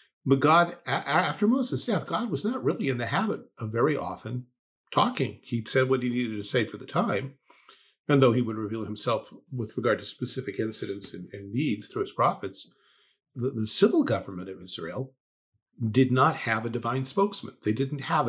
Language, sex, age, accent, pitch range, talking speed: English, male, 50-69, American, 105-135 Hz, 190 wpm